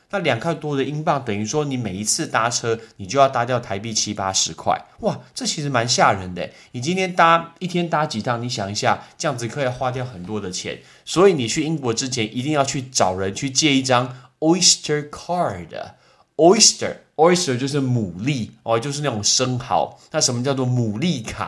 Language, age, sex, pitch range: Chinese, 20-39, male, 110-150 Hz